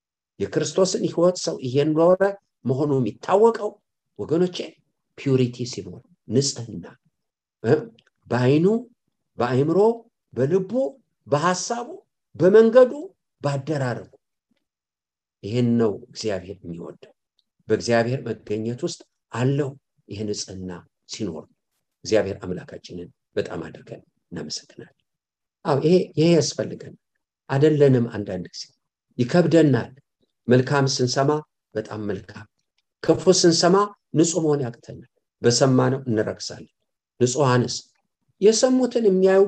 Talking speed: 60 wpm